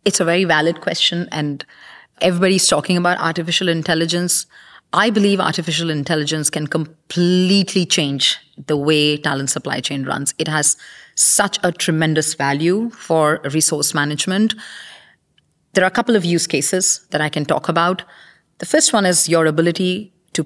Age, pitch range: 30-49, 145-180 Hz